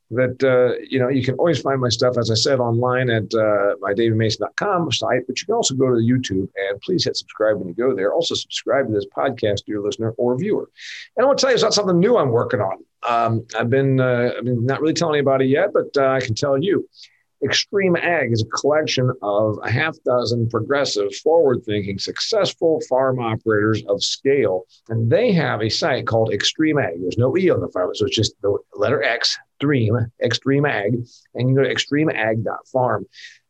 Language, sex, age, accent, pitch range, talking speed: English, male, 50-69, American, 110-155 Hz, 215 wpm